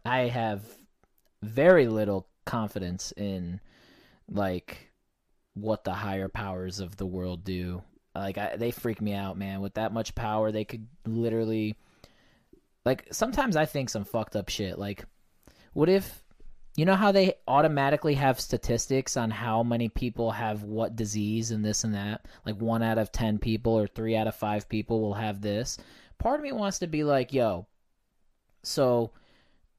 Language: English